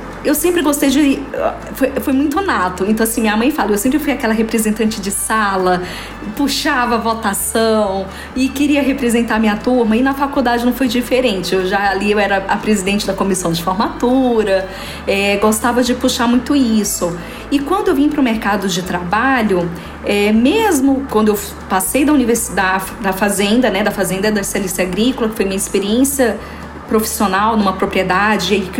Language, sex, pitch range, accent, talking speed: Portuguese, female, 205-270 Hz, Brazilian, 175 wpm